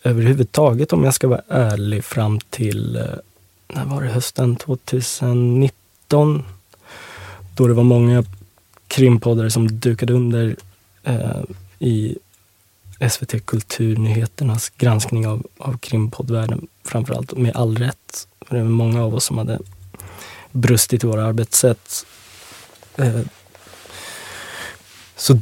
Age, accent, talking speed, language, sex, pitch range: 20-39, native, 105 wpm, Swedish, male, 110-130 Hz